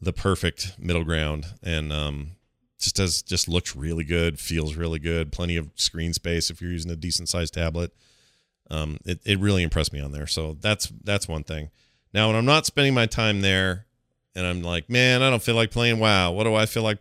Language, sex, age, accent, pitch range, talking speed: English, male, 40-59, American, 90-120 Hz, 220 wpm